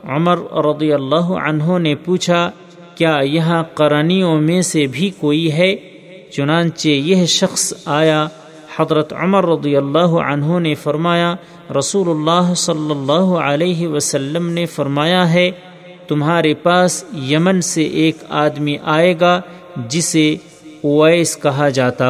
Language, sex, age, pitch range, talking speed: Urdu, male, 50-69, 145-175 Hz, 125 wpm